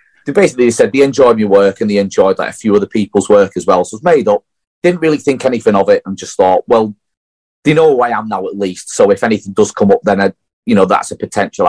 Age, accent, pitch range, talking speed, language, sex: 30-49, British, 100-130 Hz, 280 wpm, English, male